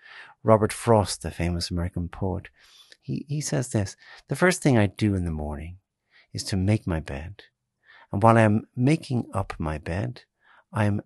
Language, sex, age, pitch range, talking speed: English, male, 60-79, 90-120 Hz, 170 wpm